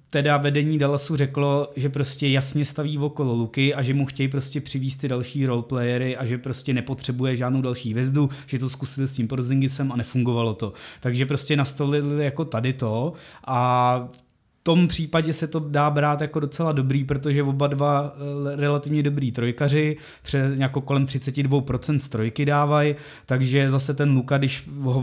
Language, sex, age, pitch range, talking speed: Czech, male, 20-39, 125-145 Hz, 165 wpm